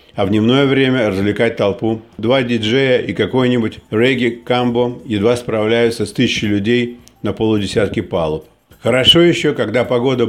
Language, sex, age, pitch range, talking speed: Russian, male, 50-69, 105-125 Hz, 135 wpm